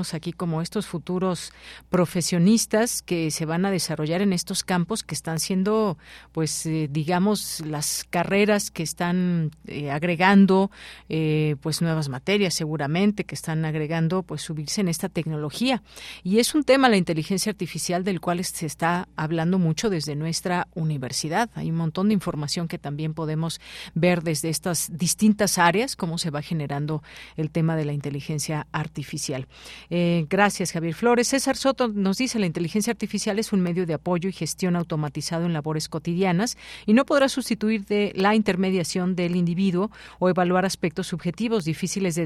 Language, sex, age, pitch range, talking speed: Spanish, female, 40-59, 160-195 Hz, 160 wpm